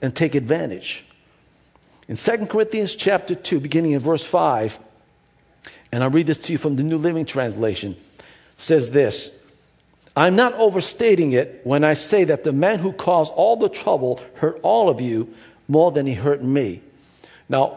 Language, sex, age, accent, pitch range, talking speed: English, male, 50-69, American, 145-190 Hz, 170 wpm